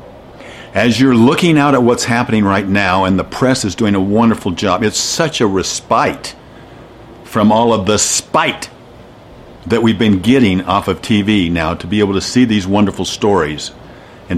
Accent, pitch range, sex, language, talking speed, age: American, 105-135 Hz, male, English, 180 wpm, 50-69